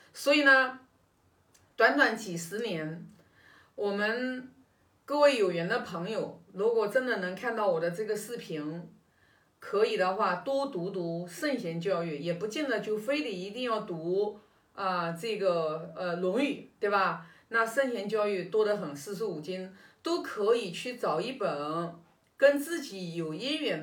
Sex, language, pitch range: female, Chinese, 185-275 Hz